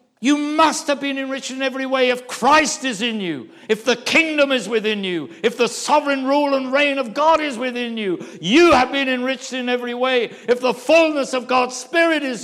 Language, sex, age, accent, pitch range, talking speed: English, male, 60-79, British, 225-290 Hz, 210 wpm